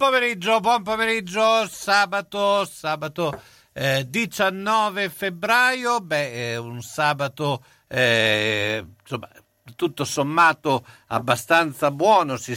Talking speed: 85 wpm